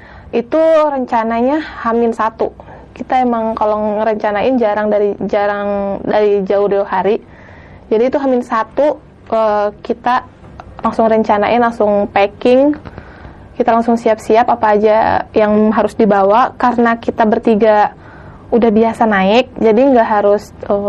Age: 20-39